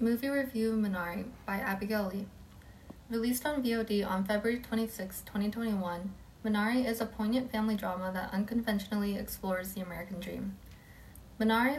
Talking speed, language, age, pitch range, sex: 130 wpm, English, 20-39, 195-225 Hz, female